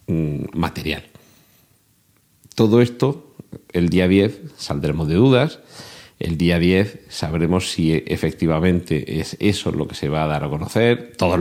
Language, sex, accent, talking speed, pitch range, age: Spanish, male, Spanish, 135 wpm, 80-110 Hz, 50-69